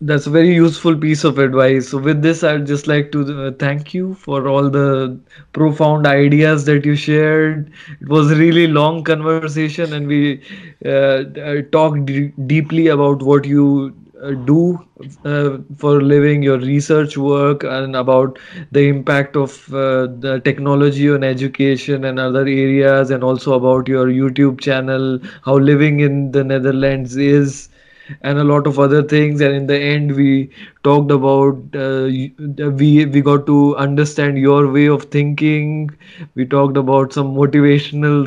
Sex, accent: male, Indian